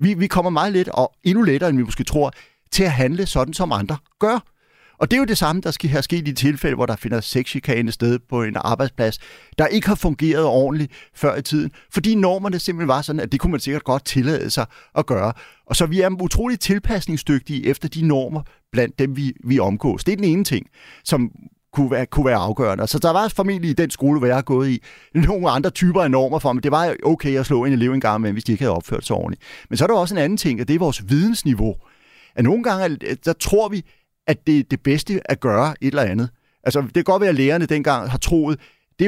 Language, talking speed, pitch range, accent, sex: Danish, 250 wpm, 125-170 Hz, native, male